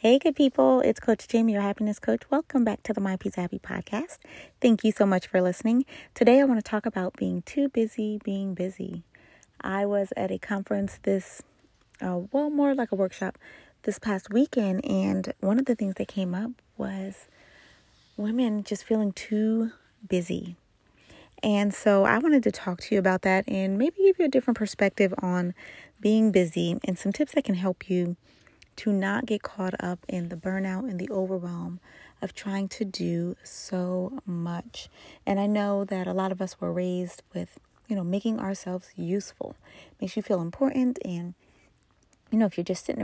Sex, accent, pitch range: female, American, 185-220 Hz